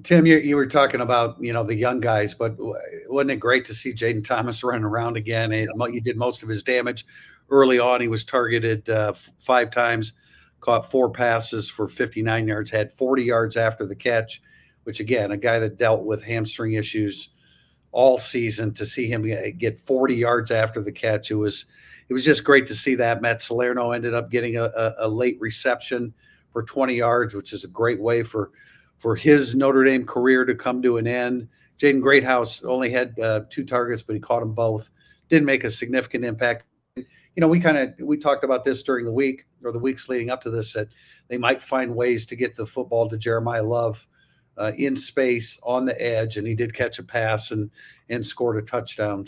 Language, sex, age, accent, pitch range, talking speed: English, male, 50-69, American, 115-130 Hz, 210 wpm